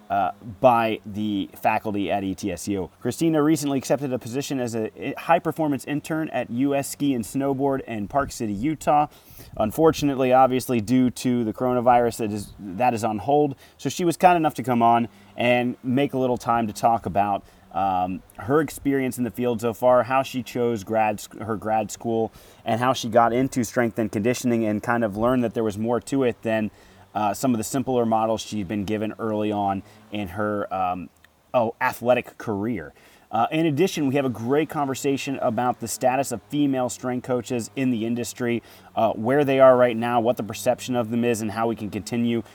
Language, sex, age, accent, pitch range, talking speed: English, male, 30-49, American, 105-130 Hz, 195 wpm